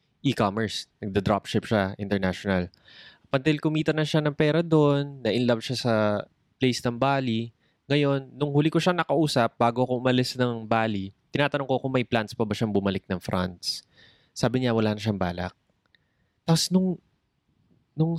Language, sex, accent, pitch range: Filipino, male, native, 115-170 Hz